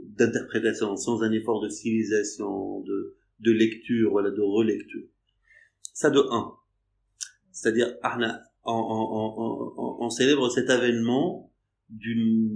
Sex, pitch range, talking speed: male, 110-145 Hz, 130 wpm